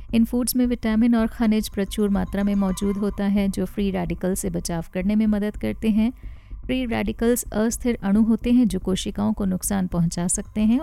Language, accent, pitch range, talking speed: Hindi, native, 185-225 Hz, 195 wpm